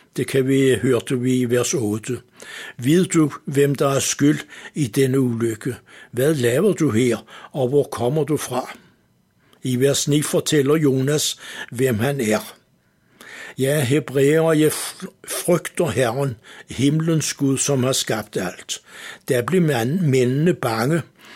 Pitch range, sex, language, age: 130-155 Hz, male, Danish, 60-79